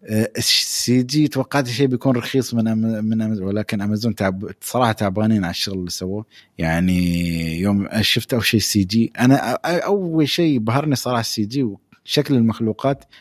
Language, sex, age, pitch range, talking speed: Arabic, male, 20-39, 110-145 Hz, 175 wpm